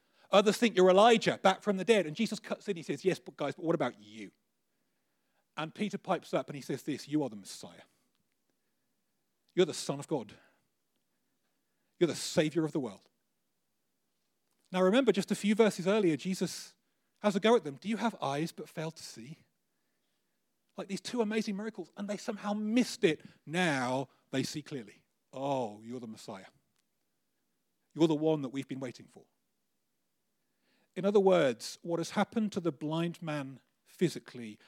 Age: 40-59